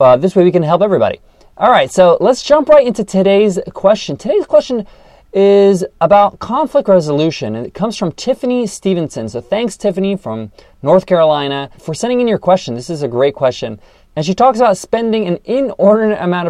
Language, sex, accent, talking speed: English, male, American, 190 wpm